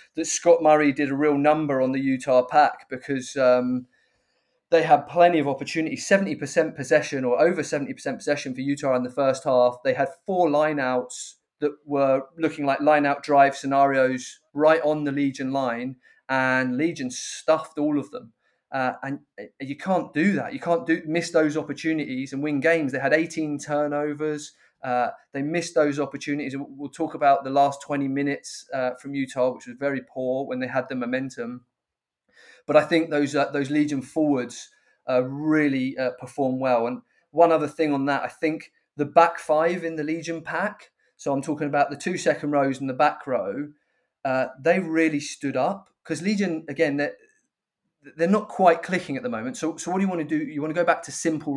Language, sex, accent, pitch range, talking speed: English, male, British, 135-160 Hz, 195 wpm